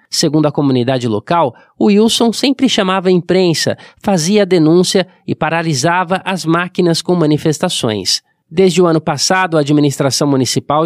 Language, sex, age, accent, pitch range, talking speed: Portuguese, male, 20-39, Brazilian, 140-180 Hz, 145 wpm